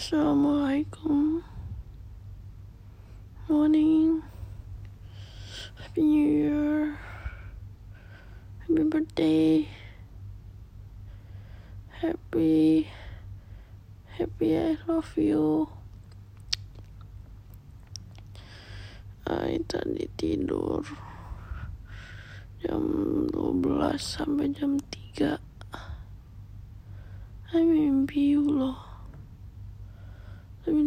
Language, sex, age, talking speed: Indonesian, female, 20-39, 45 wpm